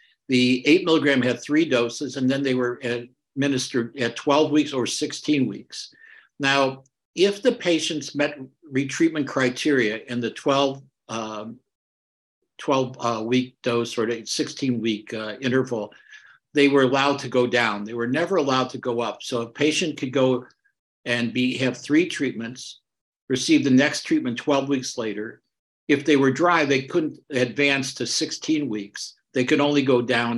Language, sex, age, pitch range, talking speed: English, male, 60-79, 120-150 Hz, 160 wpm